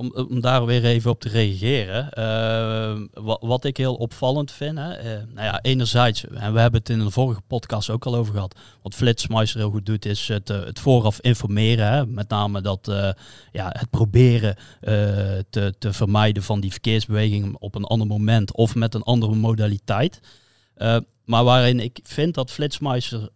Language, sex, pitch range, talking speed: Dutch, male, 105-125 Hz, 190 wpm